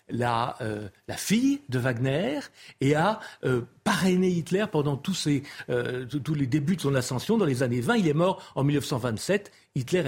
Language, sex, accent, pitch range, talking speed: French, male, French, 125-175 Hz, 185 wpm